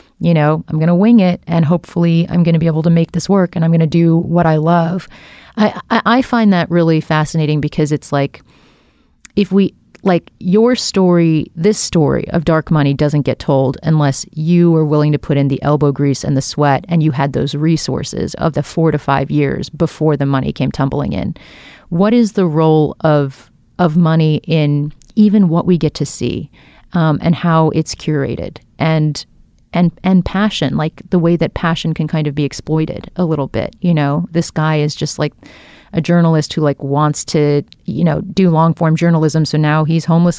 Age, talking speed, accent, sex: 30-49, 205 wpm, American, female